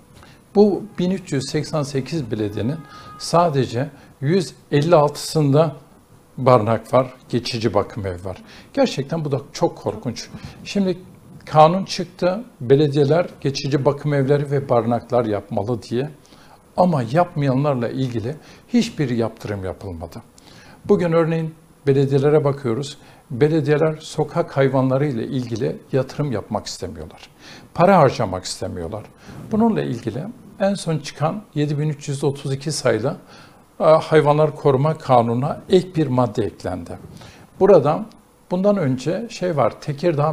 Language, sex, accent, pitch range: Turkish, male, native, 125-160 Hz